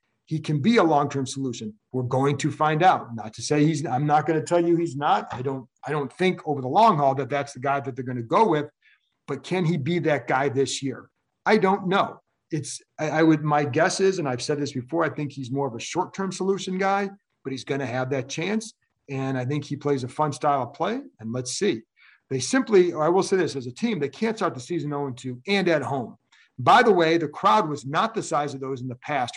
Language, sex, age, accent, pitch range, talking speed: English, male, 40-59, American, 135-175 Hz, 260 wpm